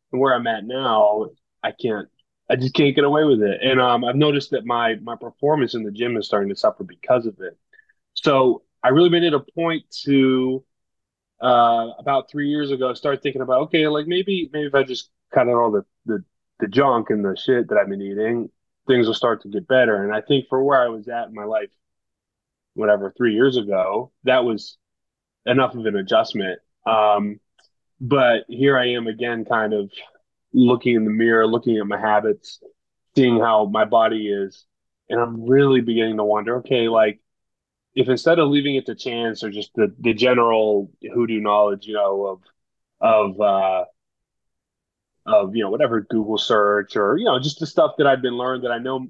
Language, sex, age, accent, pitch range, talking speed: English, male, 20-39, American, 110-135 Hz, 200 wpm